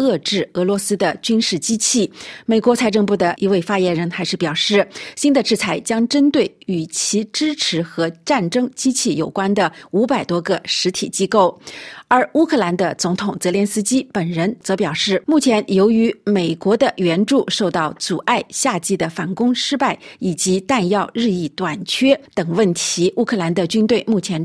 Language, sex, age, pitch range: Chinese, female, 50-69, 180-235 Hz